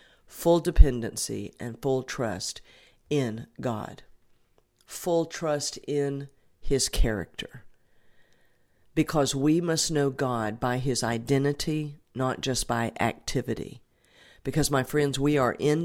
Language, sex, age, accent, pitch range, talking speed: English, female, 50-69, American, 120-145 Hz, 115 wpm